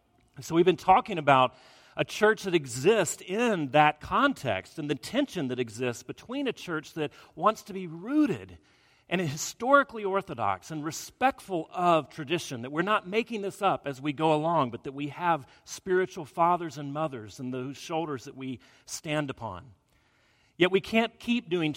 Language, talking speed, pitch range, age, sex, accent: English, 170 wpm, 135-180 Hz, 40-59, male, American